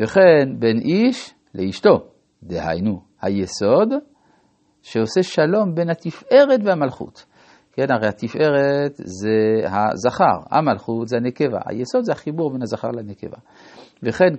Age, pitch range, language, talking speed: 50-69, 110-150 Hz, Hebrew, 110 wpm